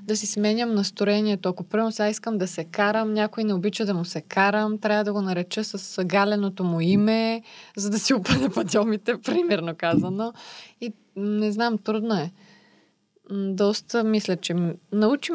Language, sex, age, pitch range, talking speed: Bulgarian, female, 20-39, 170-210 Hz, 165 wpm